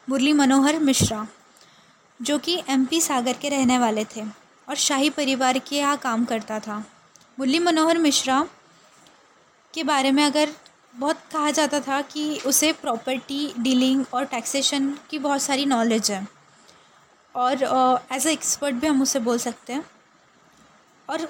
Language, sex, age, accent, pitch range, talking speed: Hindi, female, 20-39, native, 250-295 Hz, 145 wpm